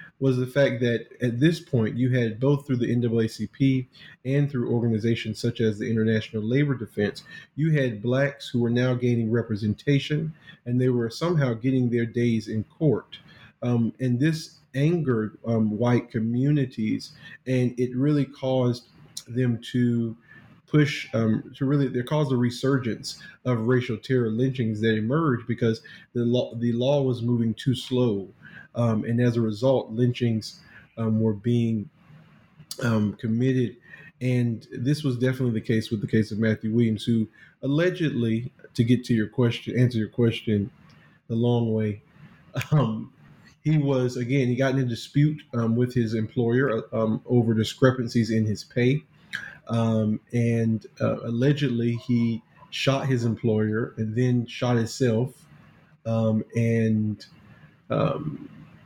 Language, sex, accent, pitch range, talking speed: English, male, American, 115-135 Hz, 150 wpm